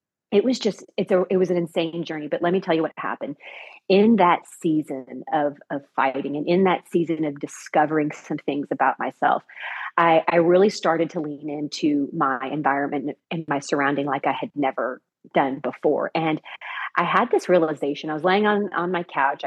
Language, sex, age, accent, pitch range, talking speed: English, female, 30-49, American, 150-185 Hz, 195 wpm